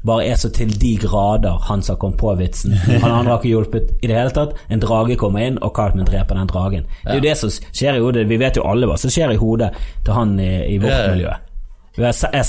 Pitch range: 95-135 Hz